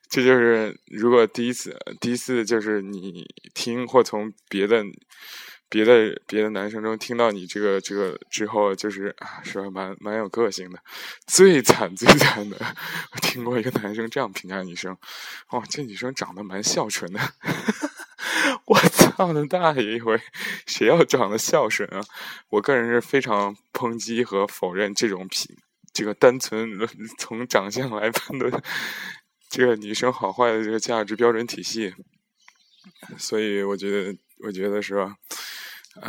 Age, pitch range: 20-39, 100-120 Hz